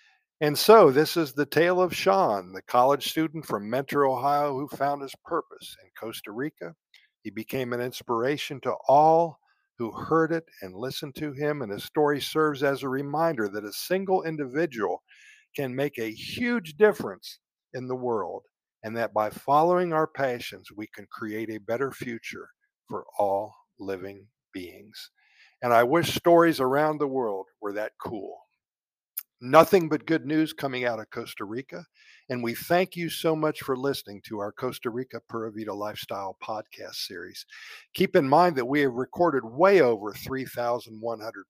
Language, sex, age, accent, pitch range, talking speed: Italian, male, 50-69, American, 120-170 Hz, 165 wpm